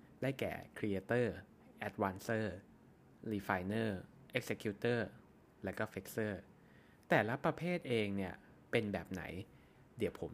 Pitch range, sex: 95-115 Hz, male